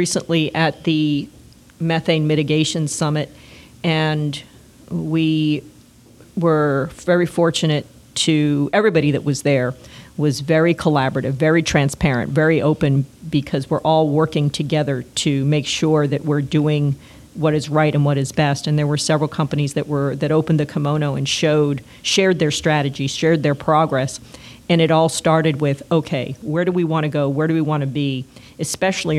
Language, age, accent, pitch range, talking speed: English, 40-59, American, 145-165 Hz, 160 wpm